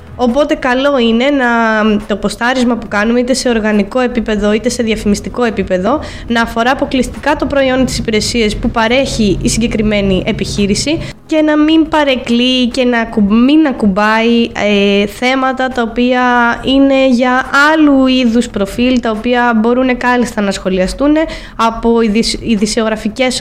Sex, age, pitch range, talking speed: female, 20-39, 220-265 Hz, 135 wpm